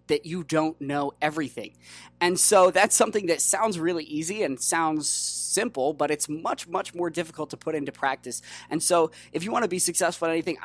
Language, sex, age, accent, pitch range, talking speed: English, male, 20-39, American, 140-175 Hz, 205 wpm